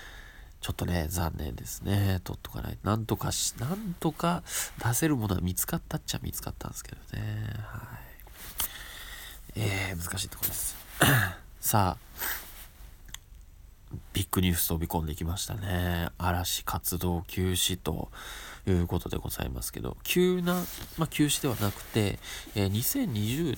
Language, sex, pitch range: Japanese, male, 85-115 Hz